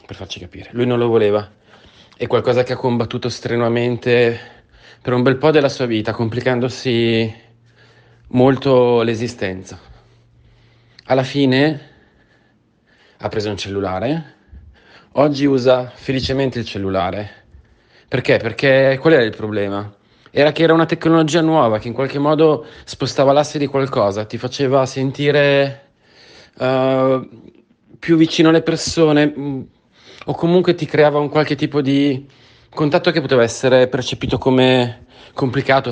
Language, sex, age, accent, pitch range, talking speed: Italian, male, 30-49, native, 115-145 Hz, 125 wpm